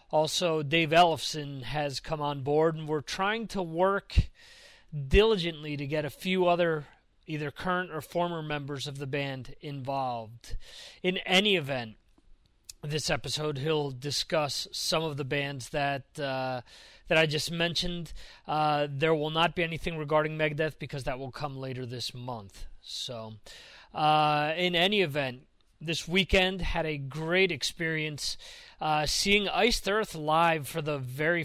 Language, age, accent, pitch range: English, 30-49, American, 145-175 Hz